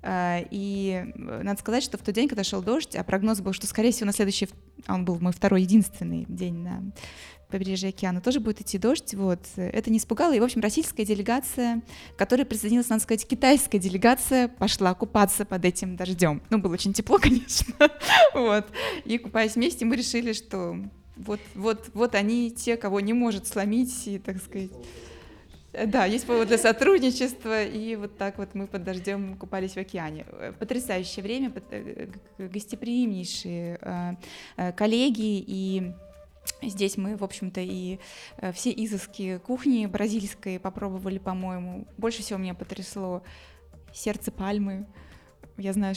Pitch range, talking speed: 190-235 Hz, 150 wpm